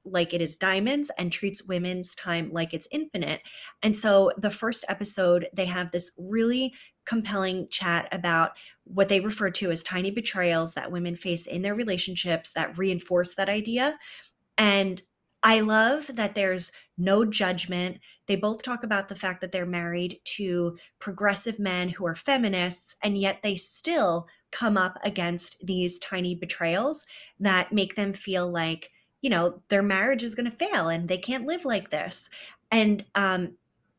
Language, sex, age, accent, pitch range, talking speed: English, female, 20-39, American, 175-215 Hz, 160 wpm